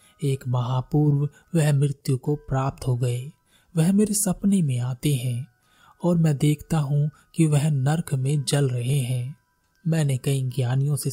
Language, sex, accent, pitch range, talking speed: Hindi, male, native, 130-165 Hz, 155 wpm